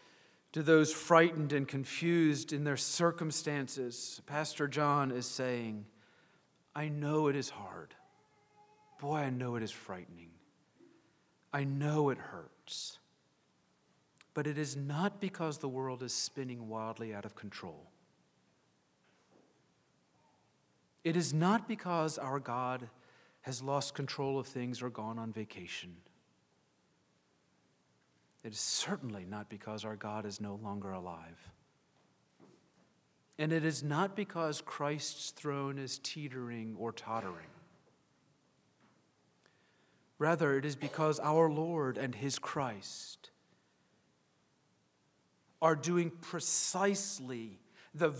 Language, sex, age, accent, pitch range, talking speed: English, male, 40-59, American, 110-160 Hz, 110 wpm